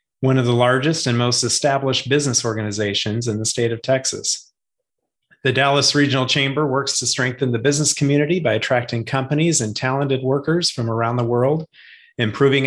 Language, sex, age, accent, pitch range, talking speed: English, male, 30-49, American, 120-145 Hz, 165 wpm